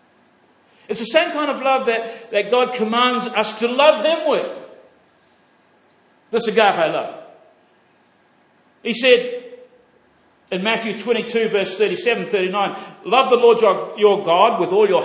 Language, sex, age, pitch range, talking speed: English, male, 50-69, 210-300 Hz, 150 wpm